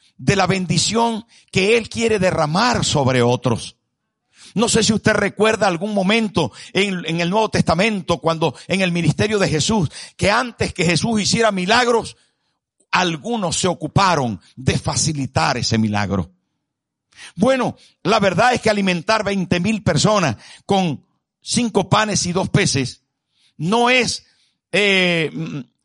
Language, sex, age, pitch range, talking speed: Spanish, male, 60-79, 155-220 Hz, 130 wpm